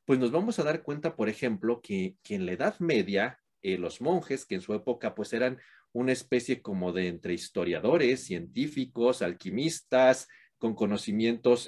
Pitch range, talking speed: 115-170 Hz, 170 wpm